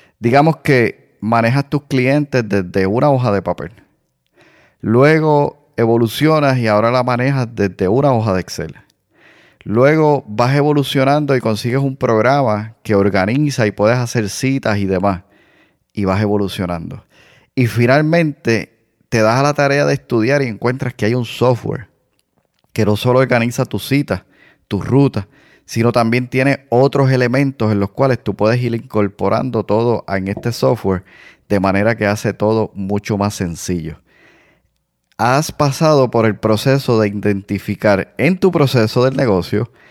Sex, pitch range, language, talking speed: male, 105-135 Hz, Spanish, 145 wpm